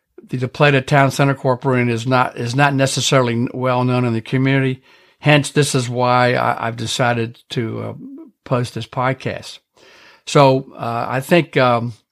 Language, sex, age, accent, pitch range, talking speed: English, male, 60-79, American, 125-140 Hz, 160 wpm